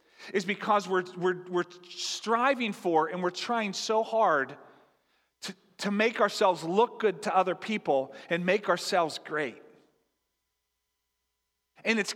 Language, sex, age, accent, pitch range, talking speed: English, male, 40-59, American, 185-285 Hz, 135 wpm